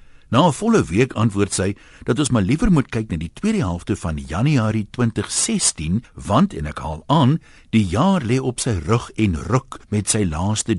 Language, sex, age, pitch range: Dutch, male, 60-79, 90-135 Hz